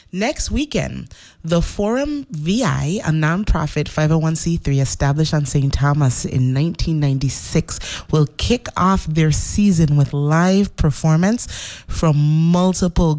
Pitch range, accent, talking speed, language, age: 145-180 Hz, American, 110 wpm, English, 30-49